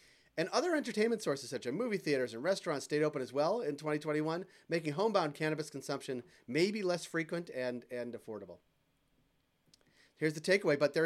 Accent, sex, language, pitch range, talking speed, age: American, male, English, 125-160 Hz, 170 wpm, 30-49